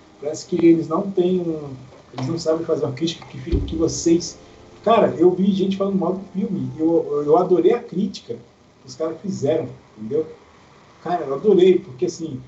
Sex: male